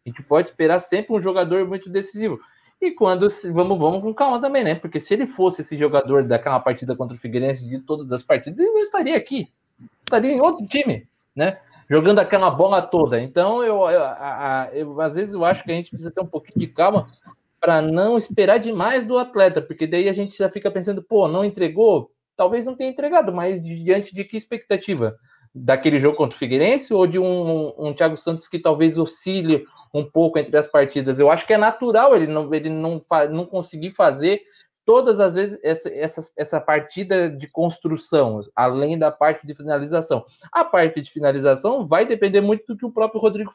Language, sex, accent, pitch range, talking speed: Portuguese, male, Brazilian, 155-220 Hz, 195 wpm